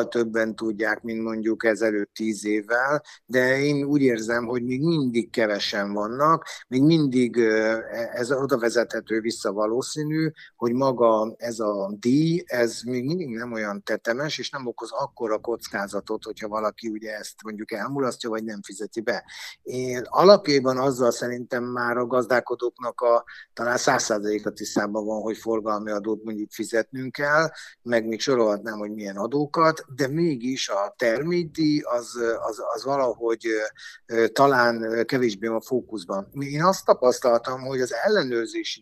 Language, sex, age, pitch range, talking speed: Hungarian, male, 50-69, 110-130 Hz, 140 wpm